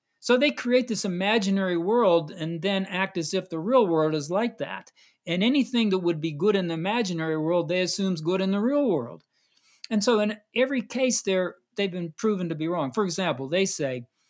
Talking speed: 210 wpm